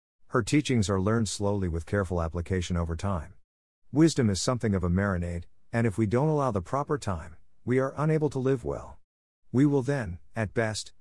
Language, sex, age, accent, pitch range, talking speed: English, male, 50-69, American, 90-115 Hz, 190 wpm